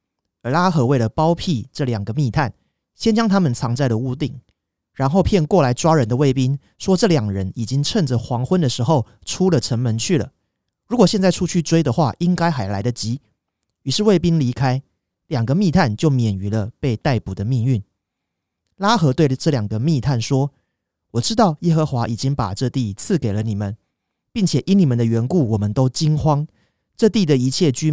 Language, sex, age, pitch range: Chinese, male, 30-49, 110-160 Hz